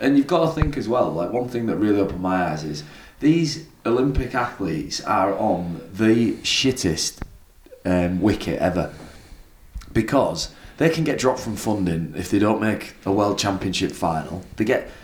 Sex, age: male, 20-39